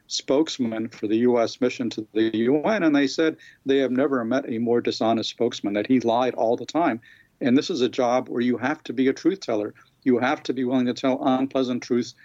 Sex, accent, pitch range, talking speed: male, American, 115-135 Hz, 230 wpm